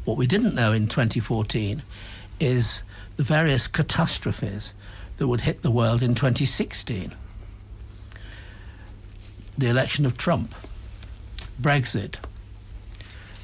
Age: 60-79